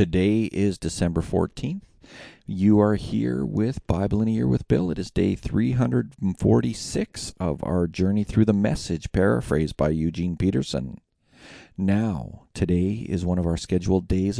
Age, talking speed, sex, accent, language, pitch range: 40-59, 150 wpm, male, American, English, 85-110 Hz